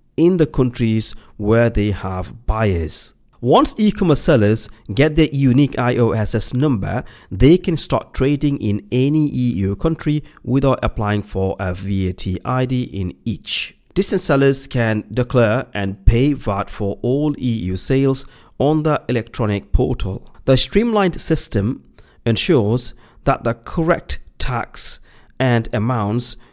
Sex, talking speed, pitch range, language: male, 125 wpm, 105-135 Hz, English